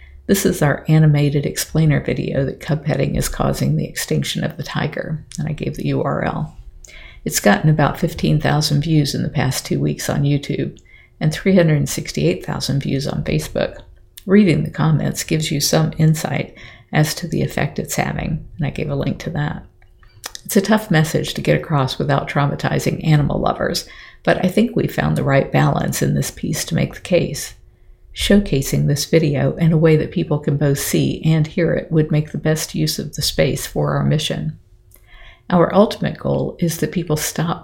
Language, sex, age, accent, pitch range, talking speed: English, female, 50-69, American, 140-165 Hz, 185 wpm